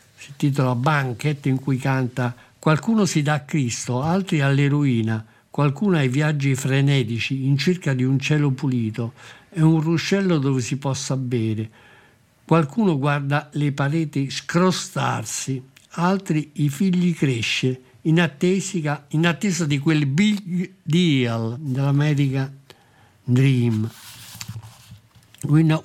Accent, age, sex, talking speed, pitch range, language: native, 60-79, male, 120 wpm, 125-160 Hz, Italian